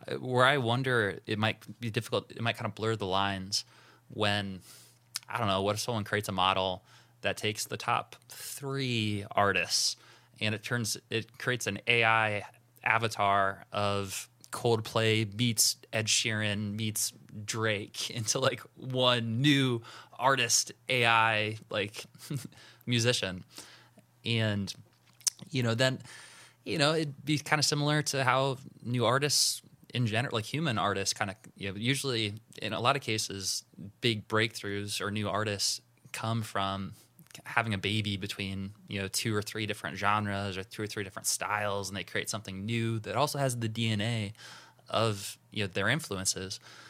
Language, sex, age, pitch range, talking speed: English, male, 20-39, 100-120 Hz, 155 wpm